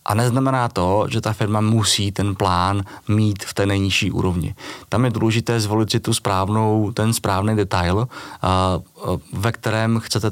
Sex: male